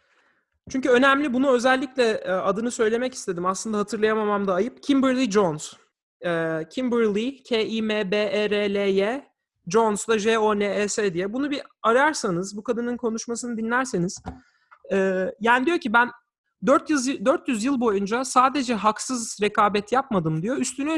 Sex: male